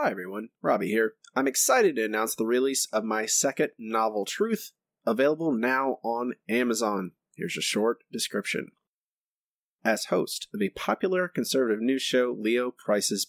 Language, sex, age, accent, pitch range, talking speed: English, male, 30-49, American, 105-130 Hz, 150 wpm